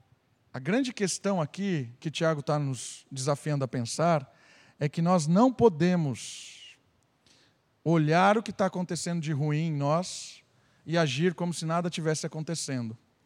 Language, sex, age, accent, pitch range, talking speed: Portuguese, male, 50-69, Brazilian, 140-180 Hz, 145 wpm